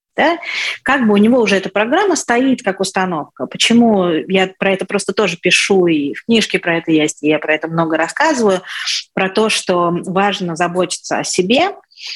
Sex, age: female, 30-49